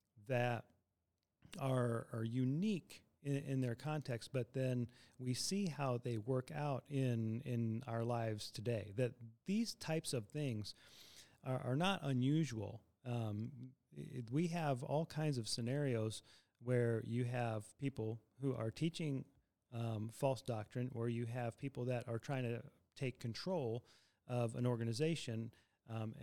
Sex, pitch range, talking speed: male, 115-135 Hz, 140 wpm